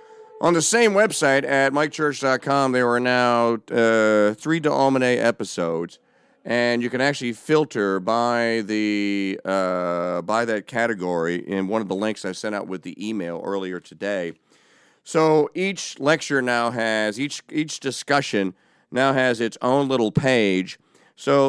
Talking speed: 145 wpm